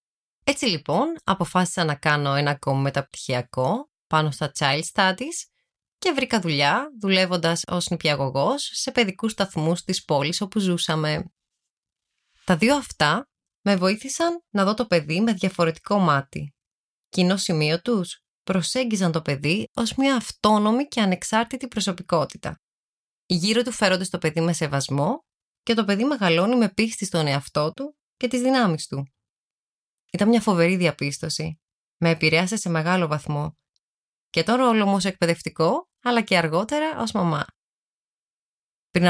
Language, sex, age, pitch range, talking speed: Greek, female, 20-39, 155-215 Hz, 140 wpm